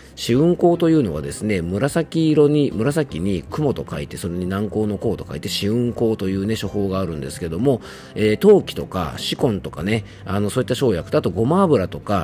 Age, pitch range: 40-59, 90-140 Hz